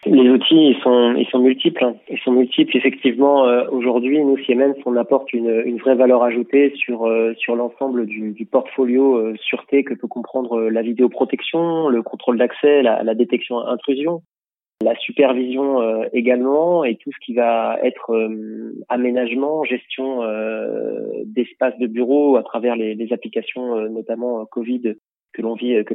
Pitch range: 120-135 Hz